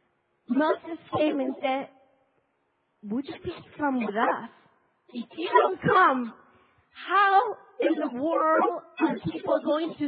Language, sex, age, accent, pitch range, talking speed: English, female, 40-59, American, 250-340 Hz, 130 wpm